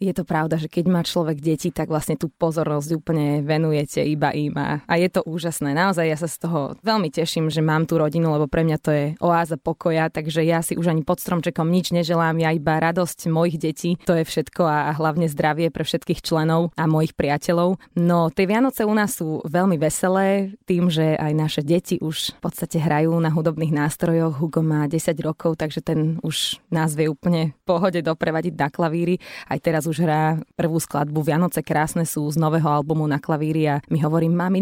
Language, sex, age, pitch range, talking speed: Slovak, female, 20-39, 155-175 Hz, 200 wpm